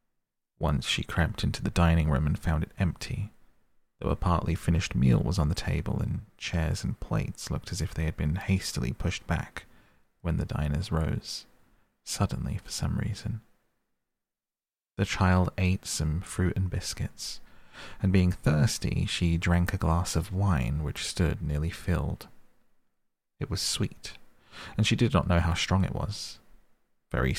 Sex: male